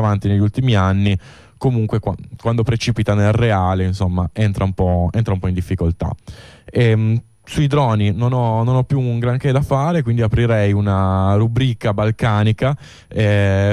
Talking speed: 140 wpm